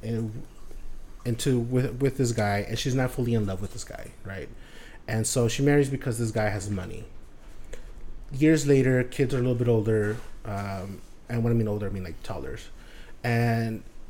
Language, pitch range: English, 105-130 Hz